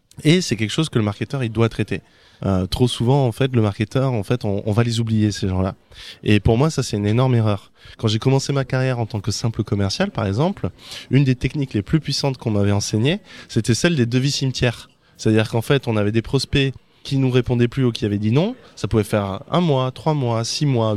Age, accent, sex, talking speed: 20-39, French, male, 245 wpm